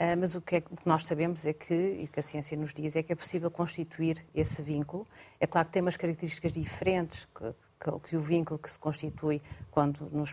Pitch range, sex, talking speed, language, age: 155-175 Hz, female, 245 wpm, Portuguese, 40-59